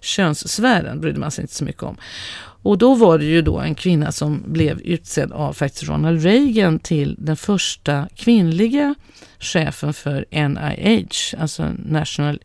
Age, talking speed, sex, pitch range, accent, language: 40-59, 155 wpm, female, 150-195 Hz, native, Swedish